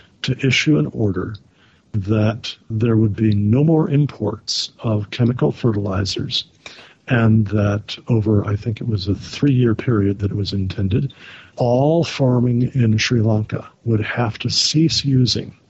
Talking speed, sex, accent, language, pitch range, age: 145 wpm, male, American, English, 105-125 Hz, 50-69